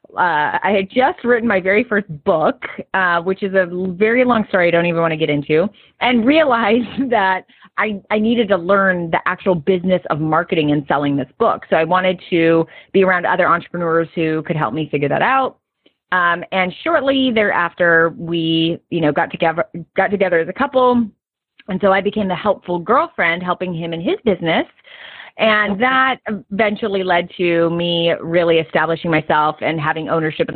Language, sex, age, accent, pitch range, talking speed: English, female, 30-49, American, 165-200 Hz, 185 wpm